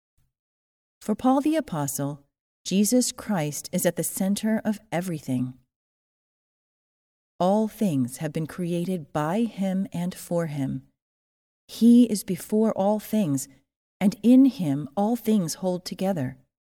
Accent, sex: American, female